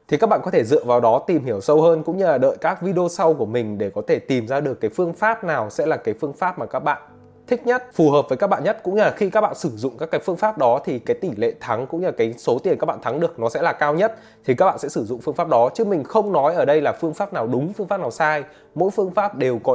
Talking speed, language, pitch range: 330 wpm, Vietnamese, 125-205 Hz